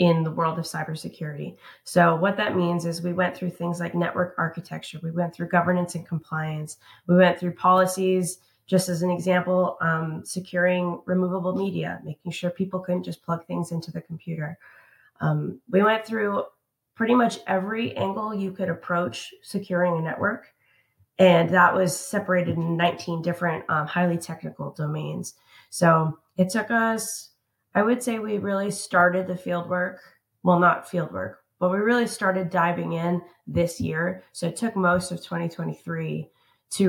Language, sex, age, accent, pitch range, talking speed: English, female, 20-39, American, 160-185 Hz, 165 wpm